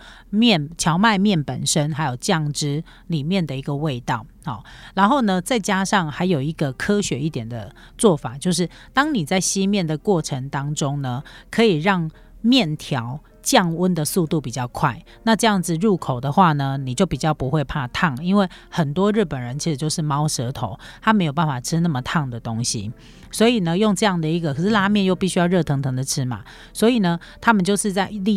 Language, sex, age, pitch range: Chinese, female, 40-59, 140-185 Hz